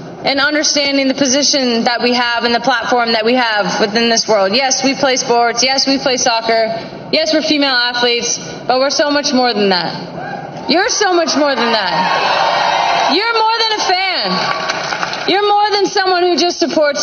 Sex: female